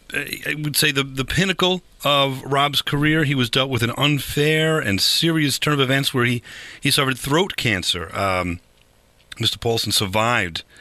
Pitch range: 105-145 Hz